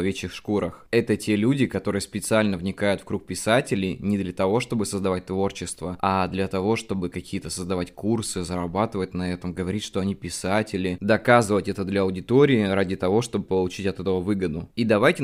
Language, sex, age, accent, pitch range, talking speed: Russian, male, 20-39, native, 95-110 Hz, 175 wpm